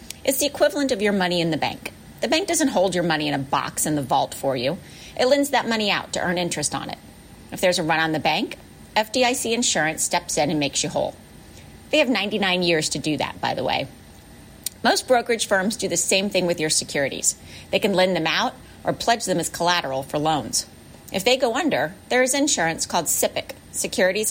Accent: American